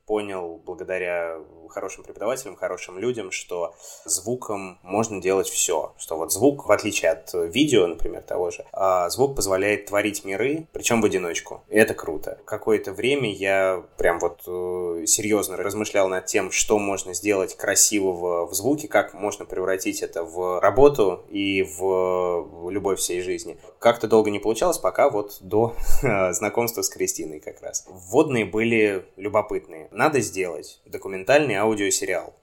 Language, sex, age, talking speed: Russian, male, 20-39, 140 wpm